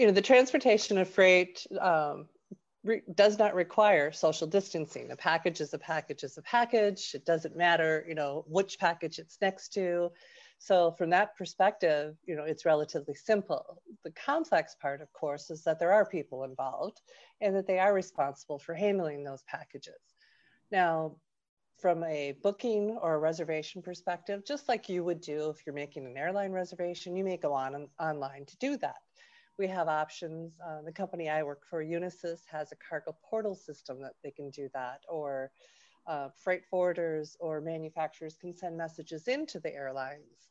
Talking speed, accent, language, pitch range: 170 wpm, American, English, 155-200 Hz